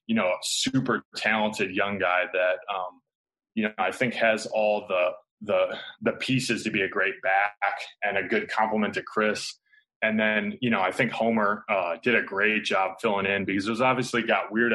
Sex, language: male, English